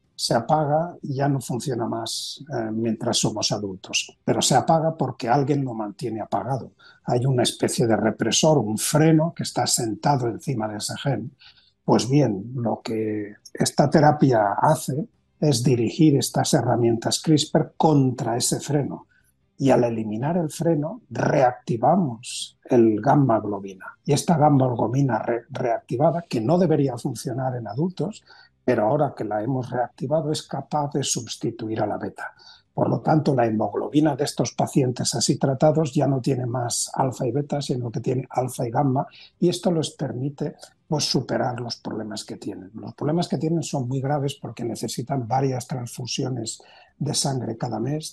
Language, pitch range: Spanish, 120-155 Hz